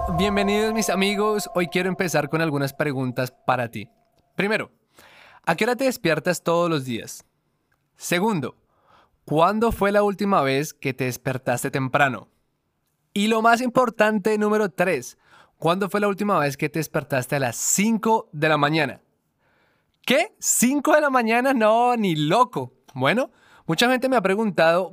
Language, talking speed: English, 155 wpm